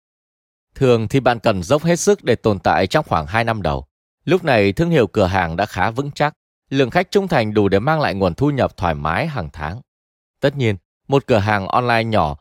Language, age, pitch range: Vietnamese, 20-39, 95-140 Hz